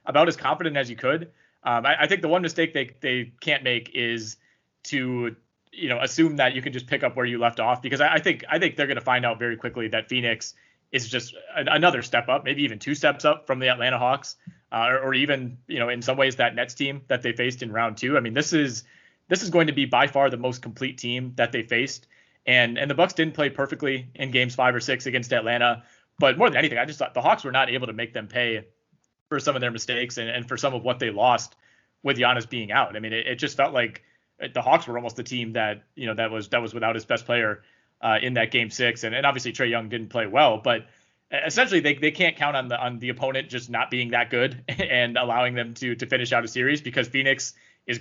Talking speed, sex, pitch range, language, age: 260 wpm, male, 120-140 Hz, English, 30-49